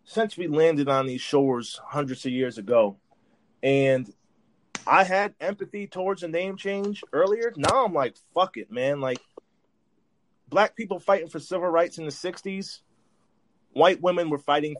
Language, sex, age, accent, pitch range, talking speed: English, male, 30-49, American, 140-185 Hz, 160 wpm